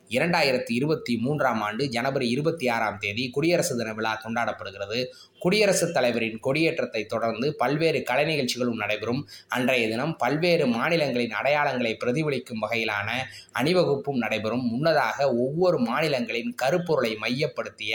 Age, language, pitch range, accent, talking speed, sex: 20-39, Tamil, 120-165 Hz, native, 110 wpm, male